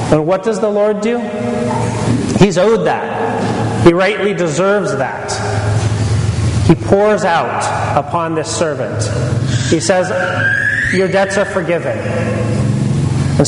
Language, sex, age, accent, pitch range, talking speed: English, male, 30-49, American, 150-195 Hz, 115 wpm